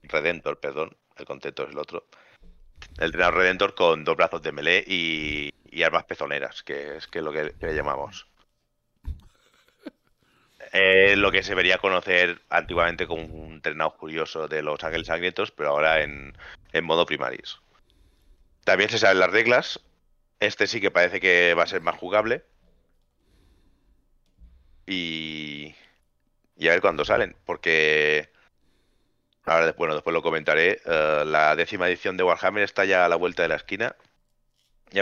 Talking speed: 155 wpm